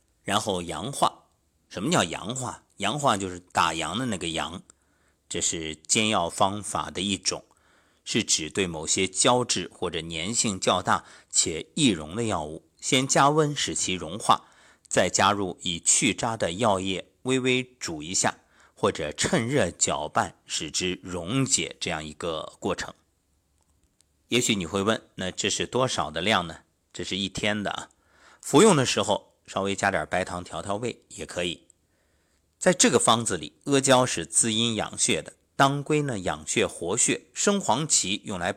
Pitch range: 85-120 Hz